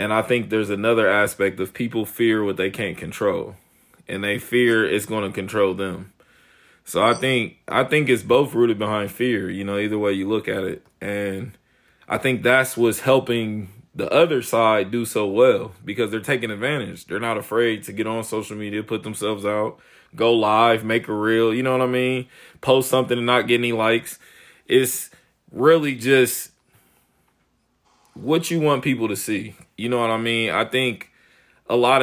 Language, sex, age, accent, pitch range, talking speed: English, male, 20-39, American, 105-125 Hz, 190 wpm